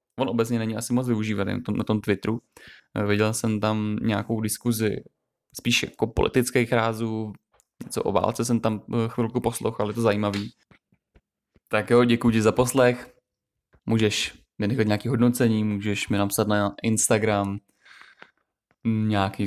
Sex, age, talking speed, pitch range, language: male, 20-39, 135 wpm, 100-115 Hz, Czech